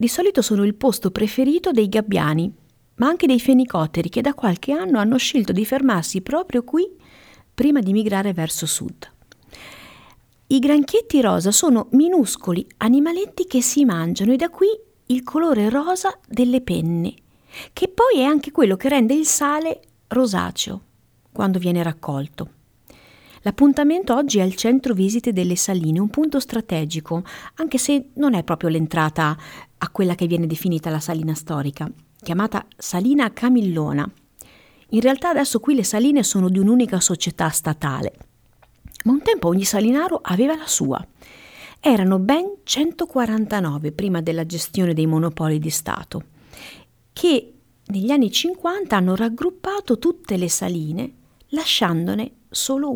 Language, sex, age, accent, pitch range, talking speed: Italian, female, 50-69, native, 175-280 Hz, 140 wpm